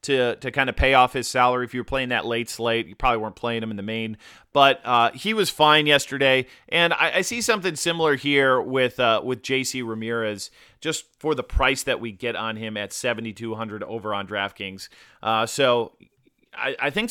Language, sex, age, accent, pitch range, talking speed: English, male, 30-49, American, 115-150 Hz, 210 wpm